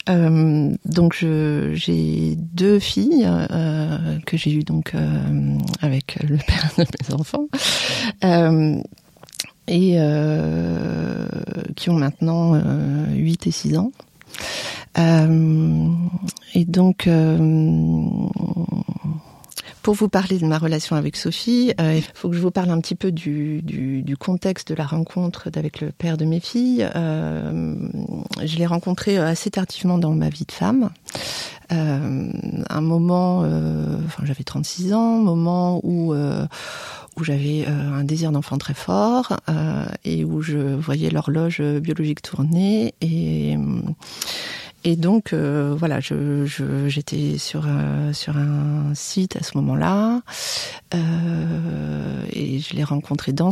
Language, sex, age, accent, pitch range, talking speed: French, female, 40-59, French, 140-180 Hz, 140 wpm